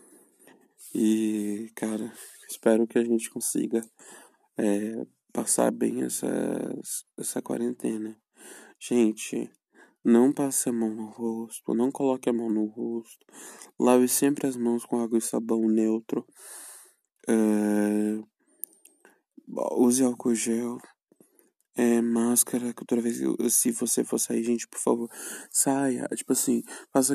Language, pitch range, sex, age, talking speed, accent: Portuguese, 110-130 Hz, male, 20-39, 120 wpm, Brazilian